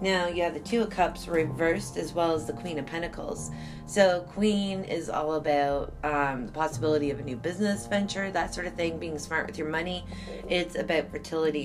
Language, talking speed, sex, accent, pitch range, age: English, 210 wpm, female, American, 145-170 Hz, 30-49